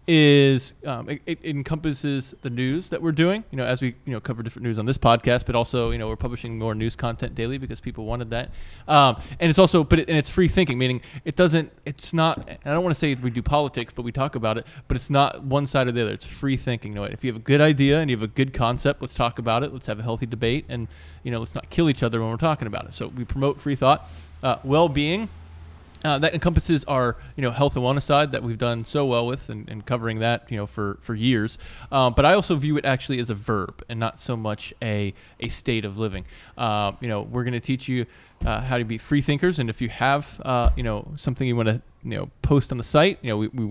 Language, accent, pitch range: English, American, 115-140 Hz